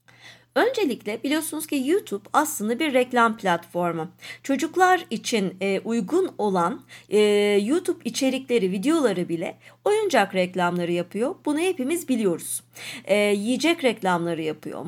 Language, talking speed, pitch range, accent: Turkish, 100 wpm, 195-300 Hz, native